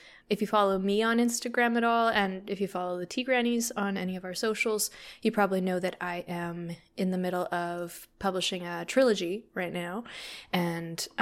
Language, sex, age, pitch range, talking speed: English, female, 20-39, 170-210 Hz, 195 wpm